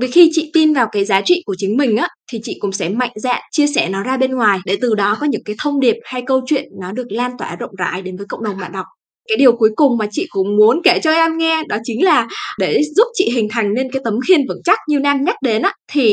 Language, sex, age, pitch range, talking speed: Vietnamese, female, 20-39, 220-310 Hz, 295 wpm